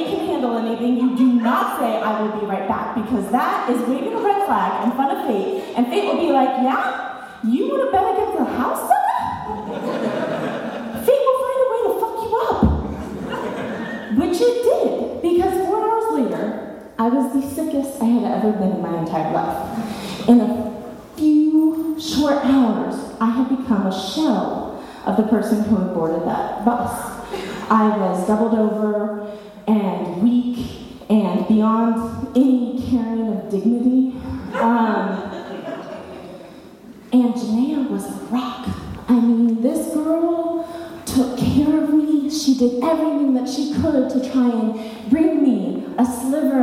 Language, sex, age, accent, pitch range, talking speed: English, female, 30-49, American, 225-290 Hz, 150 wpm